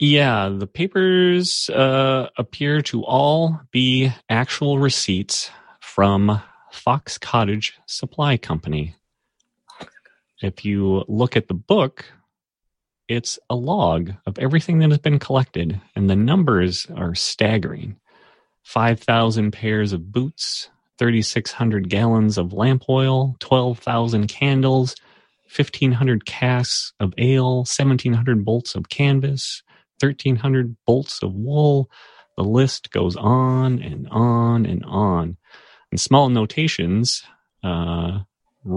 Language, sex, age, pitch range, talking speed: English, male, 30-49, 95-130 Hz, 110 wpm